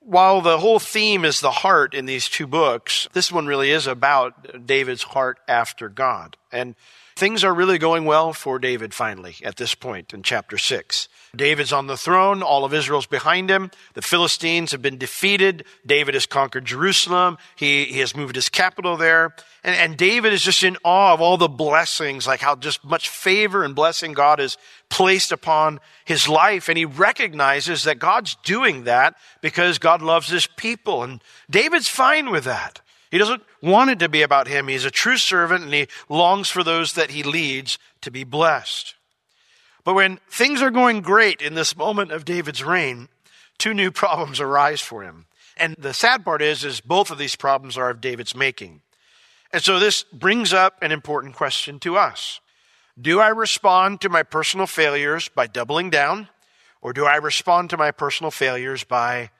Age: 50-69